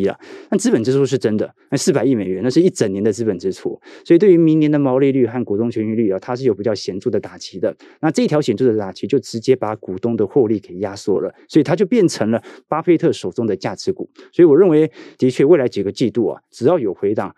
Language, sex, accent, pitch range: Chinese, male, native, 110-155 Hz